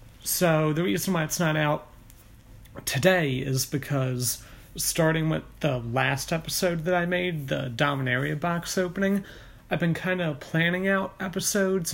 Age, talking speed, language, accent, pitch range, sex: 30-49, 145 wpm, English, American, 130-165 Hz, male